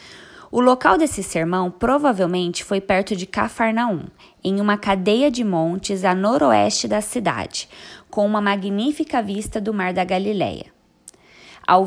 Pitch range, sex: 180-220 Hz, female